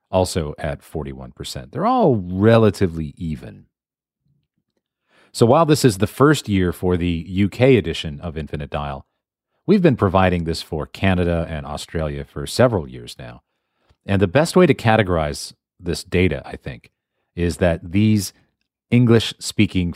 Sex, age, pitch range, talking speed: male, 40-59, 80-105 Hz, 140 wpm